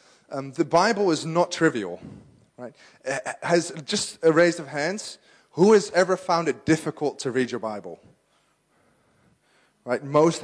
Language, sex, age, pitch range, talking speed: English, male, 30-49, 130-175 Hz, 150 wpm